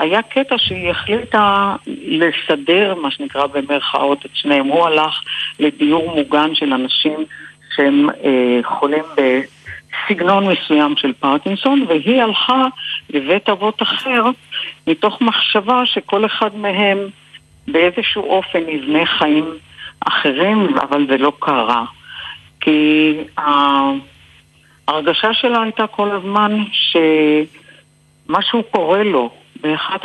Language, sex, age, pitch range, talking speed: Hebrew, female, 60-79, 140-200 Hz, 105 wpm